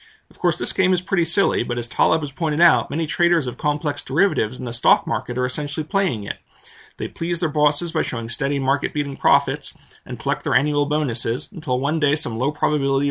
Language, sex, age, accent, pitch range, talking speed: English, male, 40-59, American, 125-155 Hz, 205 wpm